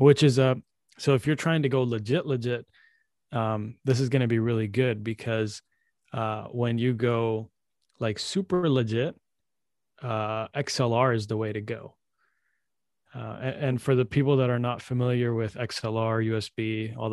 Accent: American